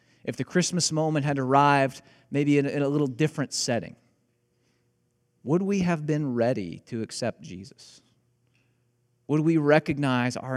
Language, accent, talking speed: English, American, 135 wpm